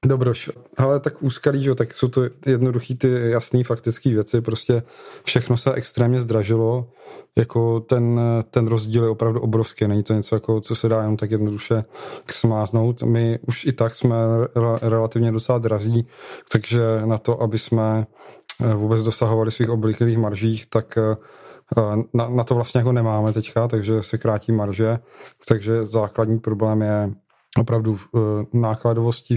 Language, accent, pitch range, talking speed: Czech, native, 110-125 Hz, 150 wpm